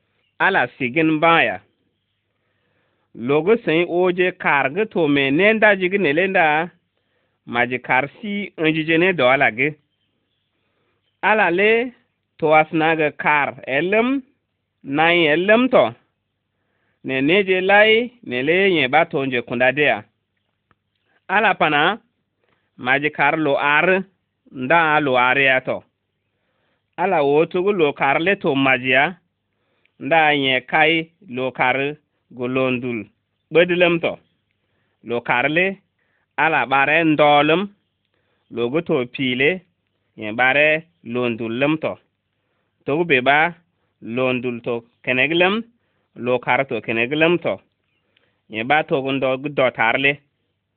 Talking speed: 125 wpm